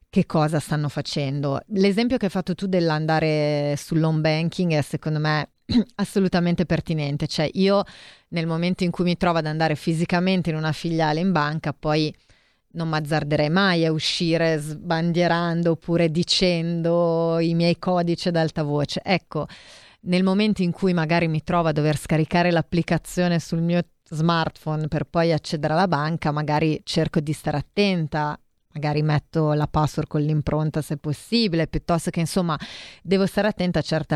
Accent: native